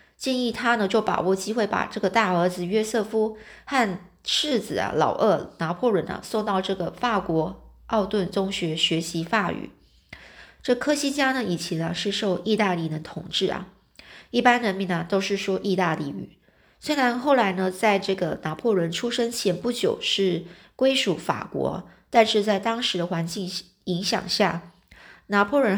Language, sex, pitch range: Chinese, female, 180-225 Hz